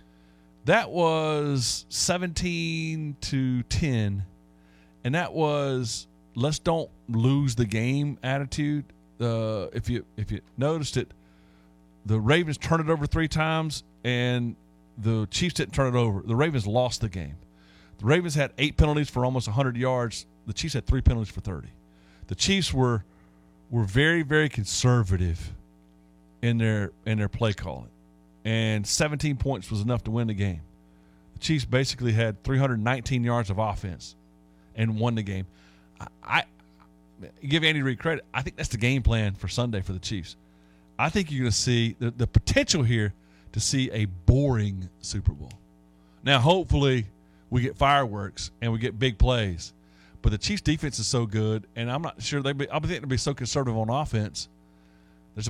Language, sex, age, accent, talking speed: English, male, 40-59, American, 170 wpm